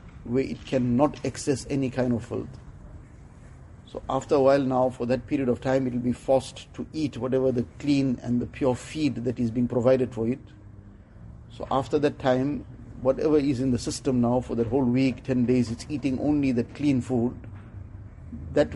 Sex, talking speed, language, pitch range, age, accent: male, 190 wpm, English, 115-135 Hz, 50-69, Indian